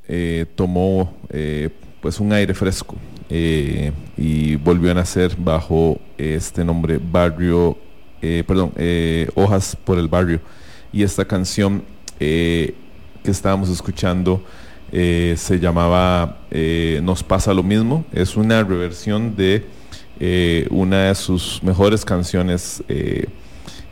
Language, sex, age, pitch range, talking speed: English, male, 30-49, 85-95 Hz, 125 wpm